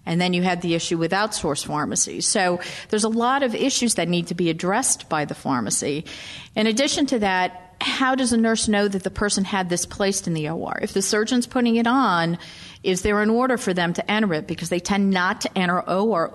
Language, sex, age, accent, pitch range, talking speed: English, female, 40-59, American, 170-205 Hz, 230 wpm